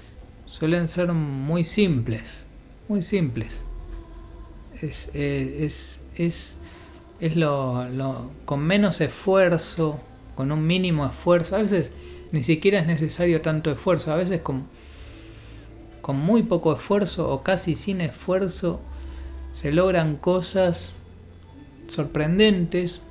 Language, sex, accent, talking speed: Spanish, male, Argentinian, 110 wpm